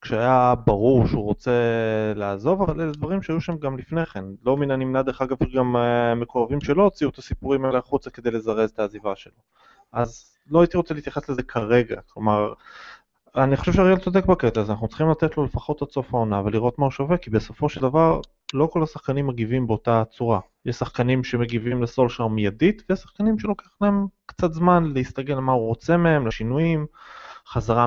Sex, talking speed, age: male, 185 wpm, 20-39